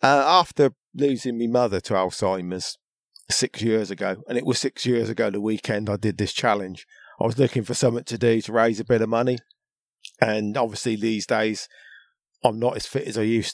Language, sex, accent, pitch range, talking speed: English, male, British, 105-125 Hz, 205 wpm